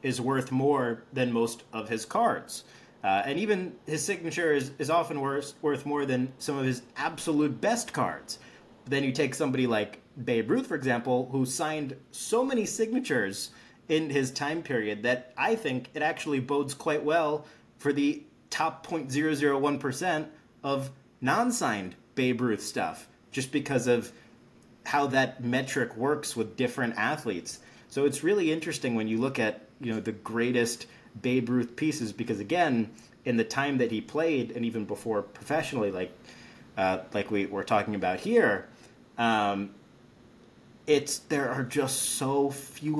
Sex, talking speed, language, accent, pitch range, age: male, 165 wpm, English, American, 120-150 Hz, 30-49